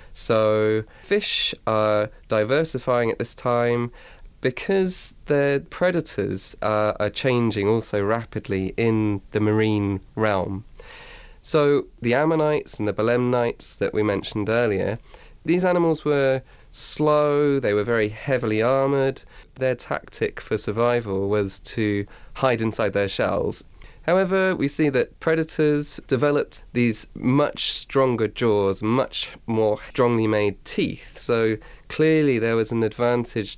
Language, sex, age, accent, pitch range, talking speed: English, male, 20-39, British, 105-135 Hz, 125 wpm